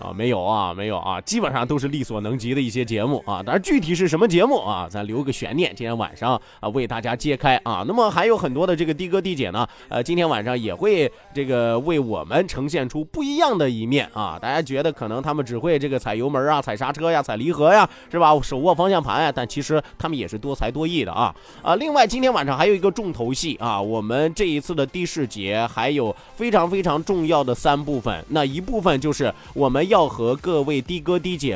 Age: 20-39